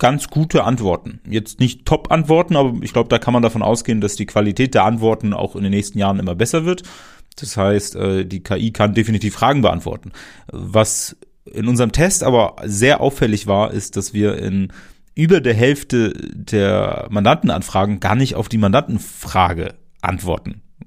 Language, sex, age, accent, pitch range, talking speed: German, male, 30-49, German, 100-115 Hz, 165 wpm